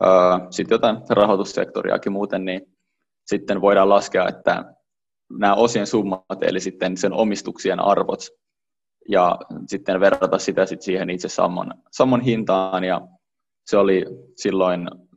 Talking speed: 125 wpm